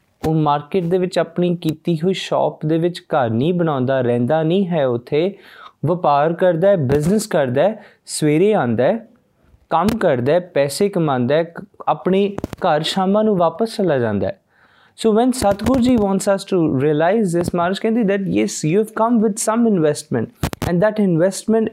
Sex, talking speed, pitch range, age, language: male, 160 wpm, 150-205 Hz, 20-39, Punjabi